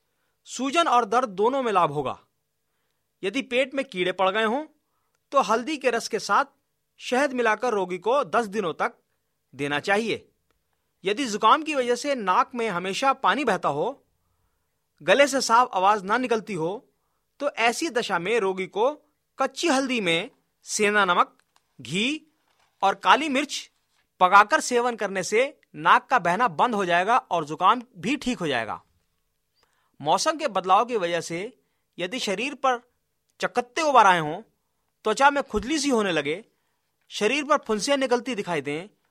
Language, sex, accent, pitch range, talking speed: Hindi, male, native, 180-270 Hz, 160 wpm